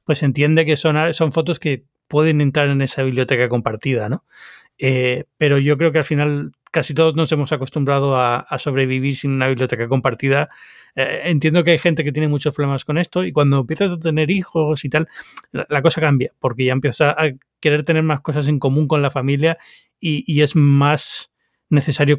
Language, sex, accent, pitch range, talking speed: Spanish, male, Spanish, 135-155 Hz, 200 wpm